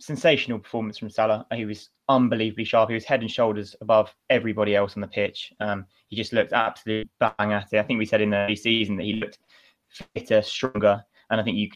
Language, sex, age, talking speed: English, male, 20-39, 225 wpm